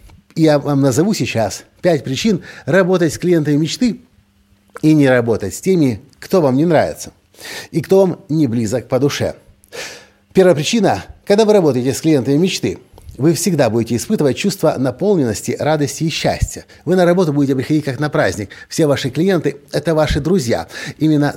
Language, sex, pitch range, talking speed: Russian, male, 130-170 Hz, 170 wpm